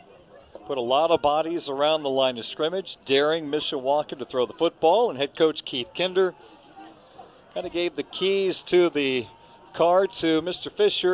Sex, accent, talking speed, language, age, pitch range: male, American, 180 wpm, English, 40-59, 135-175 Hz